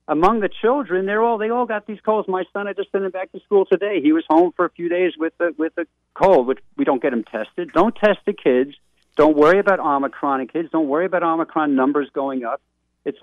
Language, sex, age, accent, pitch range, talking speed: English, male, 50-69, American, 125-175 Hz, 260 wpm